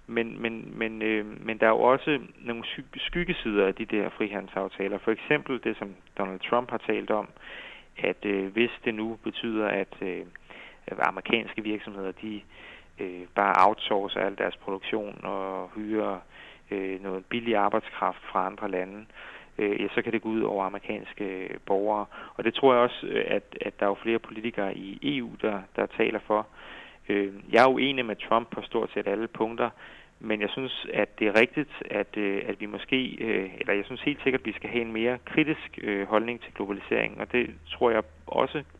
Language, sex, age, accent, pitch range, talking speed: Danish, male, 30-49, native, 100-115 Hz, 195 wpm